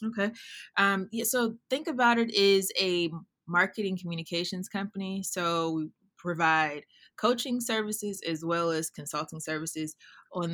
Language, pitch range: English, 155-175 Hz